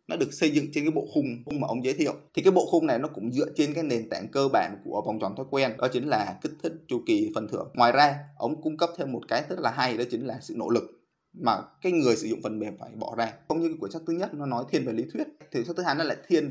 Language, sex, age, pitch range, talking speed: Vietnamese, male, 20-39, 120-160 Hz, 325 wpm